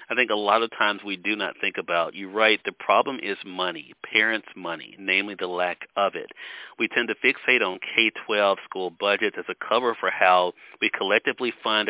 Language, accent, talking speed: English, American, 200 wpm